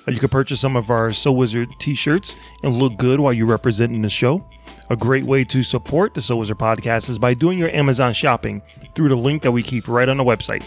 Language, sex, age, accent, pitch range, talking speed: English, male, 30-49, American, 115-135 Hz, 225 wpm